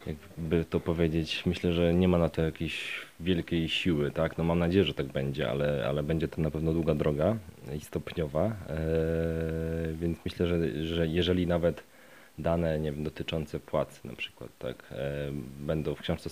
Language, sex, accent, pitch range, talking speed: Polish, male, native, 75-85 Hz, 175 wpm